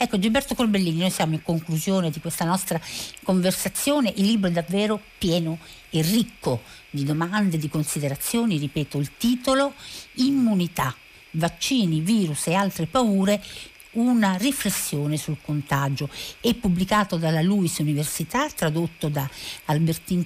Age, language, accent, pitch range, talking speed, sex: 50-69, Italian, native, 155-210 Hz, 125 wpm, female